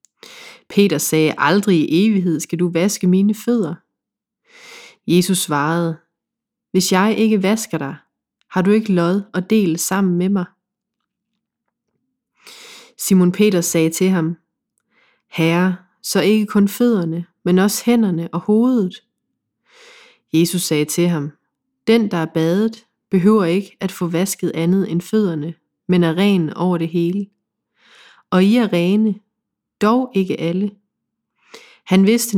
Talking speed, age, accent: 135 wpm, 30-49, native